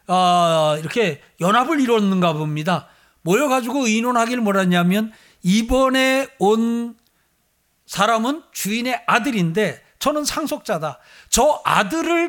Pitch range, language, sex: 180-250 Hz, Korean, male